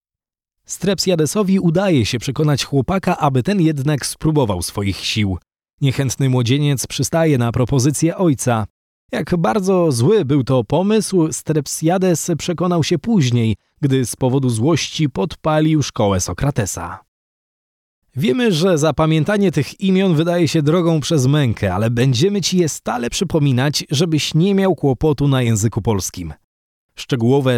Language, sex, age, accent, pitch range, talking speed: Polish, male, 20-39, native, 115-170 Hz, 125 wpm